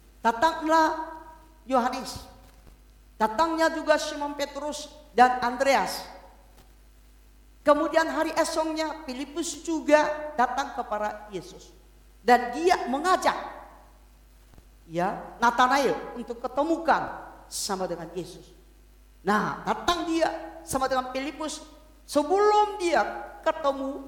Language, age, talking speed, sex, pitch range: Indonesian, 50-69, 85 wpm, female, 255-345 Hz